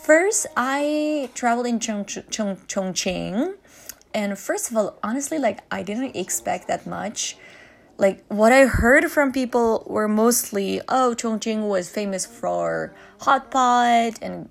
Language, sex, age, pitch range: Chinese, female, 20-39, 185-265 Hz